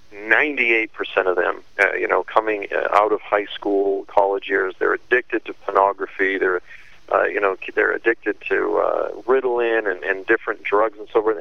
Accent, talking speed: American, 175 wpm